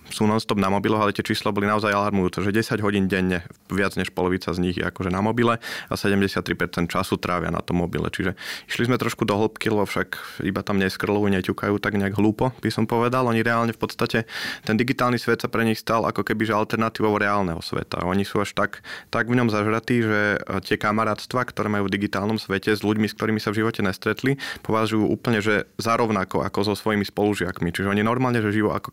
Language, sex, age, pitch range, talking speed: Slovak, male, 30-49, 95-110 Hz, 215 wpm